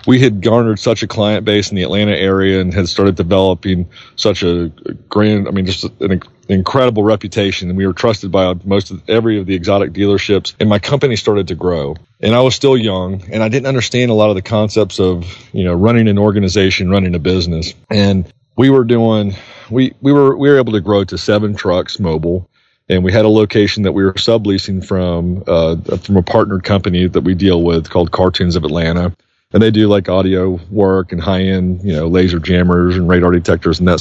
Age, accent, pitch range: 40-59, American, 90-110 Hz